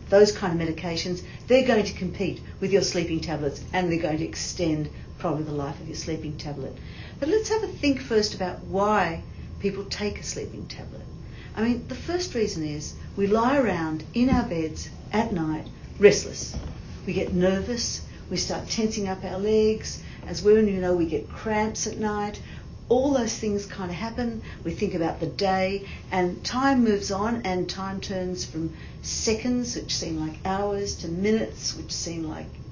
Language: English